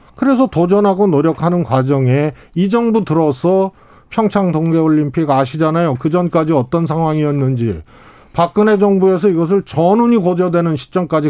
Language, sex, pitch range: Korean, male, 150-220 Hz